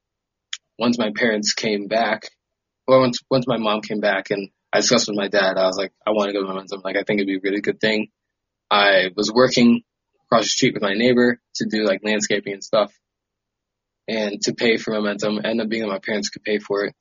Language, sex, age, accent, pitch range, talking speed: English, male, 20-39, American, 100-120 Hz, 235 wpm